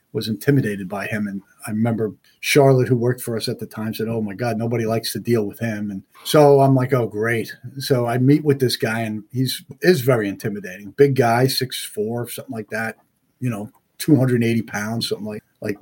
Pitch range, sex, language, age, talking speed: 115-140 Hz, male, English, 50-69, 220 wpm